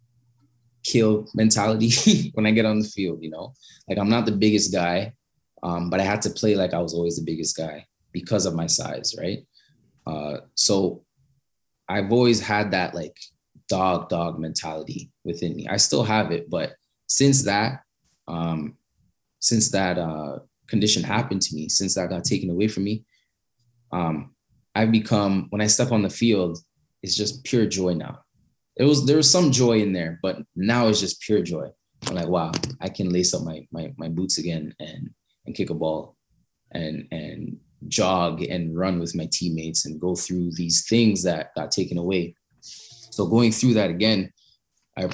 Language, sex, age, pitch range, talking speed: English, male, 20-39, 85-115 Hz, 180 wpm